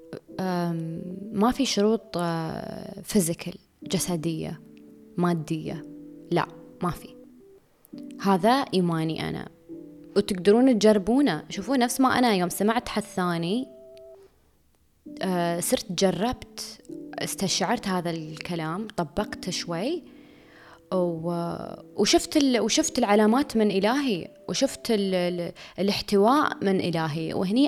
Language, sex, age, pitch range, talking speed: Arabic, female, 20-39, 175-245 Hz, 100 wpm